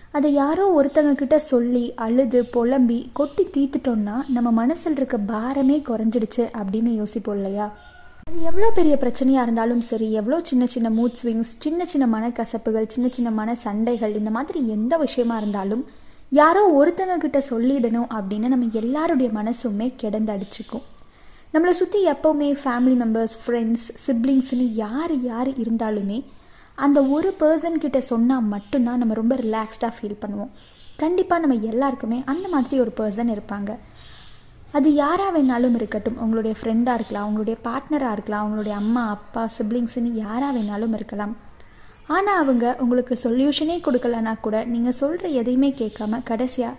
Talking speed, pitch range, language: 125 wpm, 225-280 Hz, Tamil